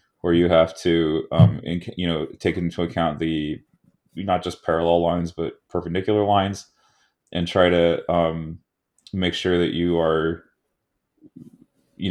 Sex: male